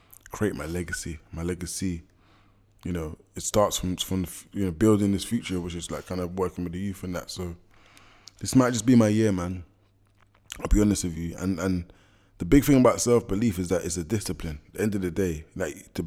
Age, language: 20-39, English